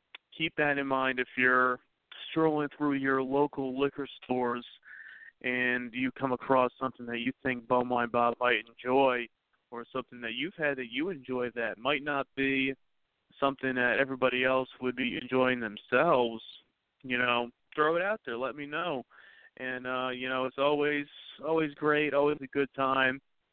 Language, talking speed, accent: English, 170 wpm, American